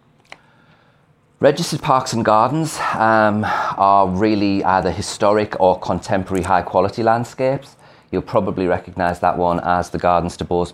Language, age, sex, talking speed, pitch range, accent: English, 30-49, male, 135 wpm, 75-100 Hz, British